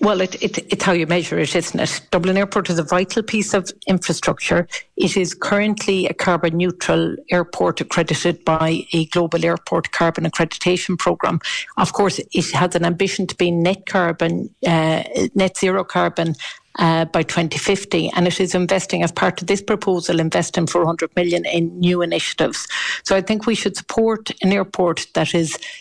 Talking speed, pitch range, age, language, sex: 170 wpm, 165-190 Hz, 60-79, English, female